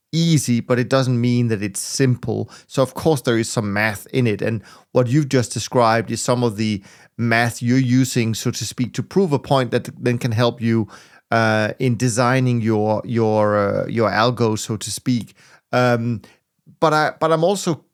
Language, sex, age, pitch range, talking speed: English, male, 30-49, 110-130 Hz, 195 wpm